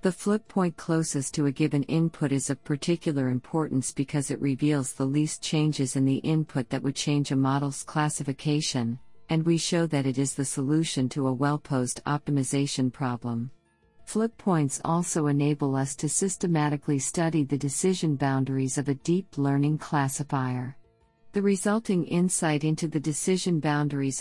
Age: 50-69